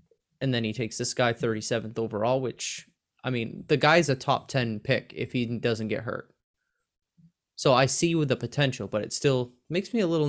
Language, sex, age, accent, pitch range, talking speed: English, male, 20-39, American, 120-150 Hz, 205 wpm